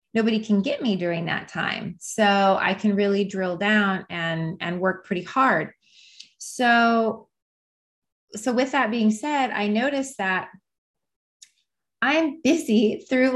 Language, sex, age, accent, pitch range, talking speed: English, female, 20-39, American, 185-230 Hz, 135 wpm